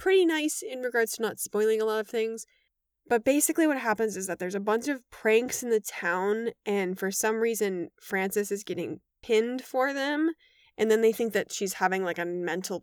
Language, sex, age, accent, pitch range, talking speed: English, female, 20-39, American, 190-240 Hz, 210 wpm